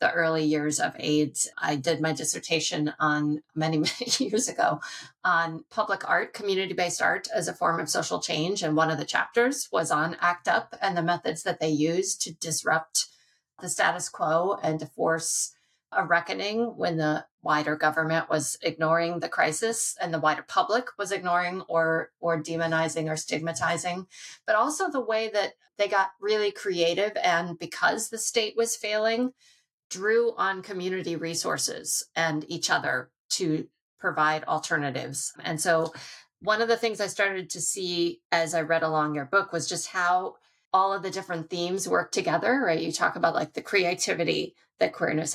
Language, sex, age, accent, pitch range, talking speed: English, female, 30-49, American, 155-200 Hz, 170 wpm